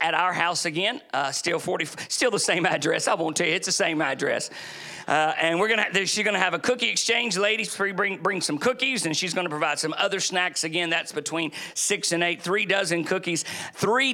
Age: 50-69